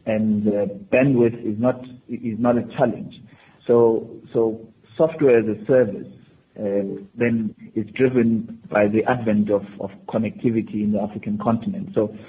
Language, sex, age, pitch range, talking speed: English, male, 50-69, 105-120 Hz, 145 wpm